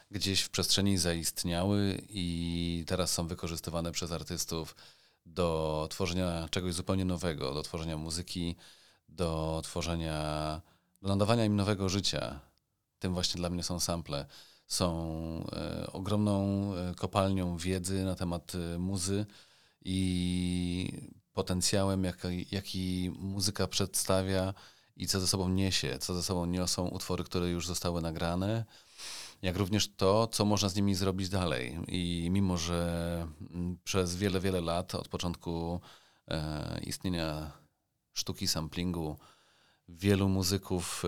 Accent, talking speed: native, 115 wpm